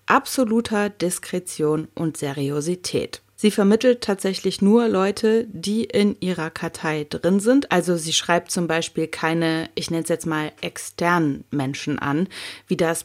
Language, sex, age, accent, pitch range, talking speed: German, female, 30-49, German, 160-210 Hz, 145 wpm